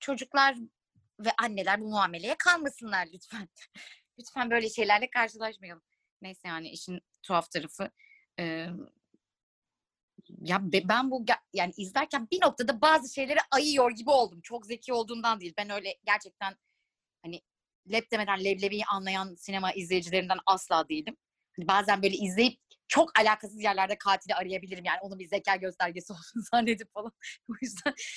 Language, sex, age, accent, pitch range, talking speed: Turkish, female, 30-49, native, 190-245 Hz, 135 wpm